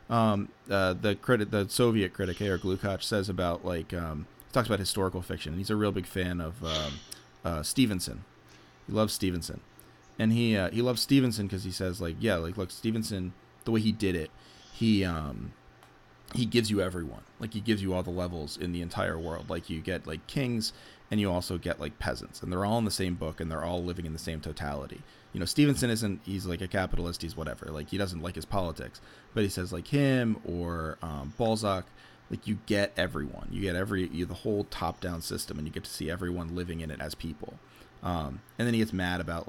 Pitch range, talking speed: 85-110 Hz, 225 wpm